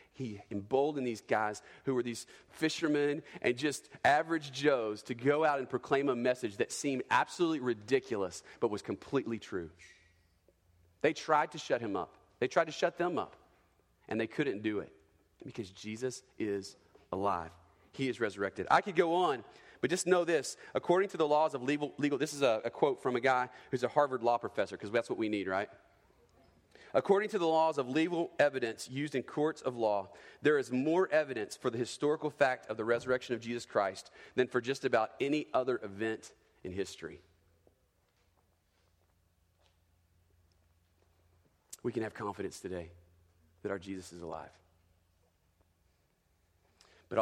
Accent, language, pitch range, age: American, English, 90-135 Hz, 40-59